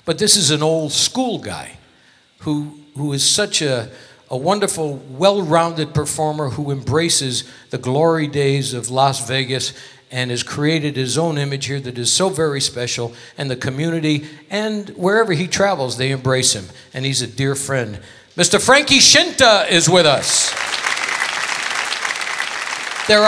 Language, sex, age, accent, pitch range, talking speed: English, male, 60-79, American, 130-185 Hz, 150 wpm